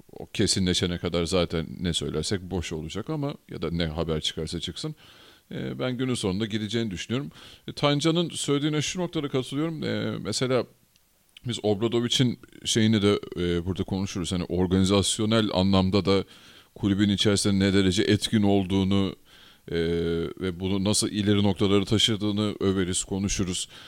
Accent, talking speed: native, 135 wpm